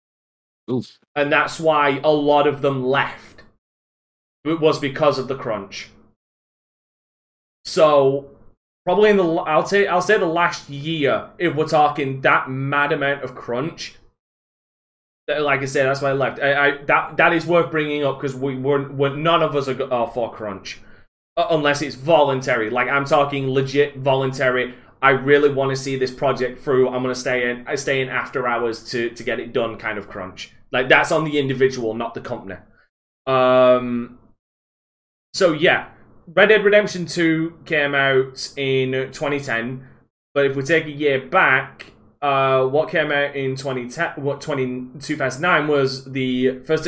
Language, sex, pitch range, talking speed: English, male, 130-150 Hz, 165 wpm